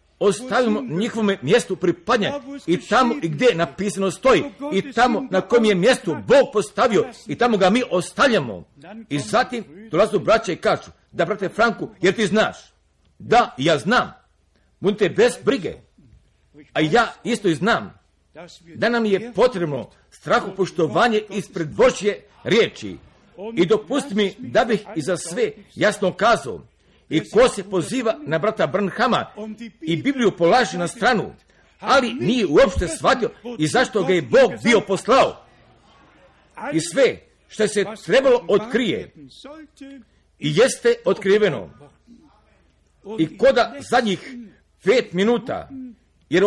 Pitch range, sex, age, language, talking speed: 175-240 Hz, male, 50-69, Croatian, 135 wpm